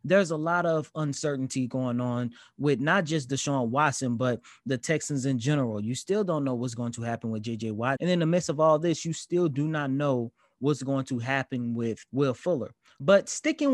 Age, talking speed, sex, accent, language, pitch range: 20-39, 215 wpm, male, American, English, 125-165 Hz